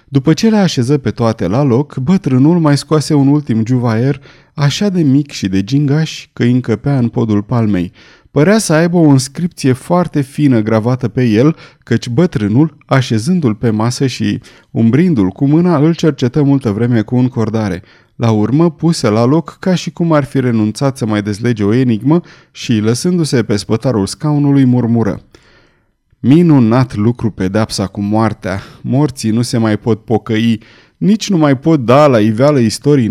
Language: Romanian